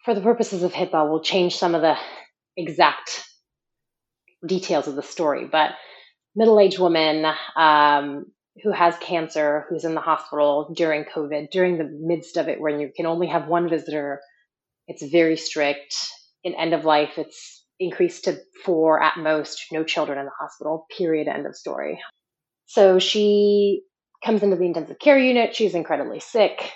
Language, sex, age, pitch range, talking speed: English, female, 30-49, 160-195 Hz, 165 wpm